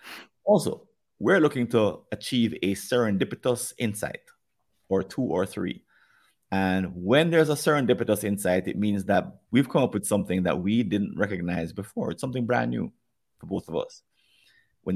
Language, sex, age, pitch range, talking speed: English, male, 30-49, 100-150 Hz, 160 wpm